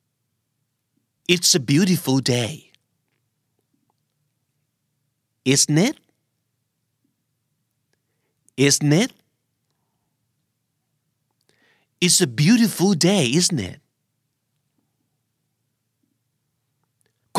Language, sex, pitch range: Thai, male, 125-150 Hz